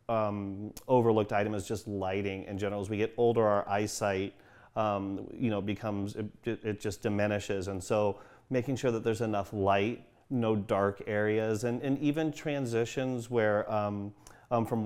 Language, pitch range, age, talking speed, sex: English, 100-115 Hz, 30-49, 170 wpm, male